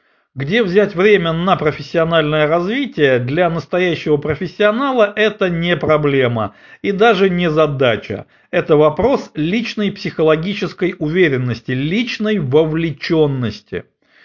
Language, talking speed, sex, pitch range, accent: Russian, 95 wpm, male, 135-195 Hz, native